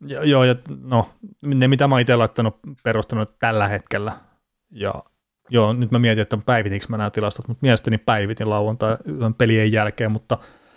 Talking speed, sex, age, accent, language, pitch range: 165 wpm, male, 30-49, native, Finnish, 105-115 Hz